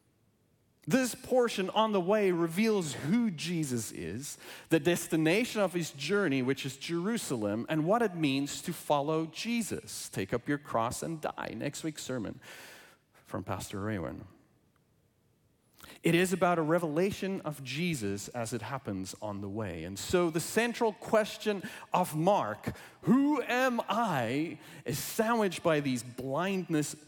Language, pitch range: English, 140-210 Hz